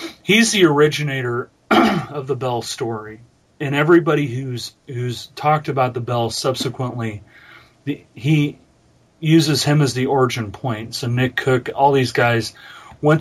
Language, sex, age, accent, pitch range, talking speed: English, male, 30-49, American, 115-145 Hz, 140 wpm